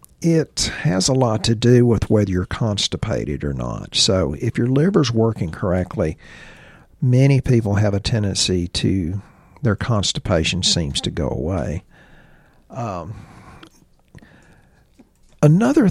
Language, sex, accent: English, male, American